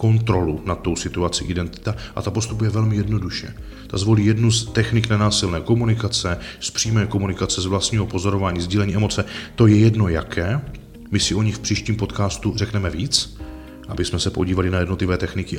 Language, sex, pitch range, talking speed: Czech, male, 90-110 Hz, 175 wpm